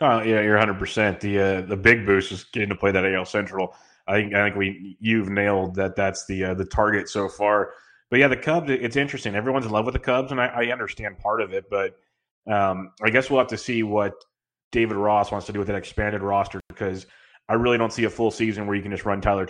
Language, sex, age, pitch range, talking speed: English, male, 30-49, 100-115 Hz, 250 wpm